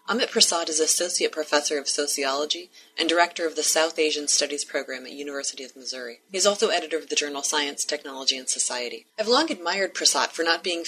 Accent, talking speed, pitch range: American, 205 wpm, 145-180 Hz